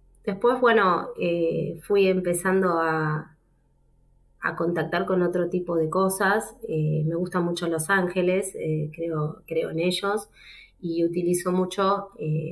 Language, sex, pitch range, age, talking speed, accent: Spanish, female, 165-205 Hz, 20-39, 135 wpm, Argentinian